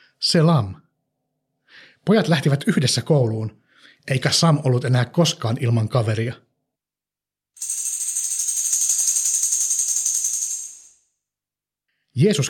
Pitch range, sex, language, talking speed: 125-160 Hz, male, Finnish, 60 wpm